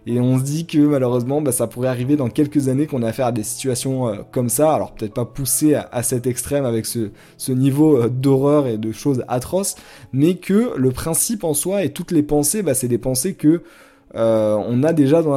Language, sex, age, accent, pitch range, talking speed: French, male, 20-39, French, 125-155 Hz, 230 wpm